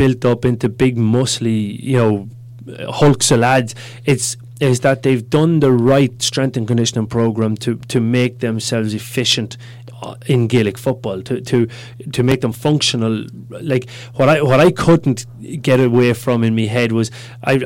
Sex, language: male, English